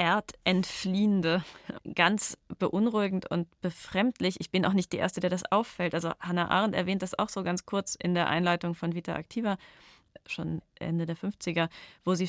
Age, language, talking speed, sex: 30-49, German, 170 wpm, female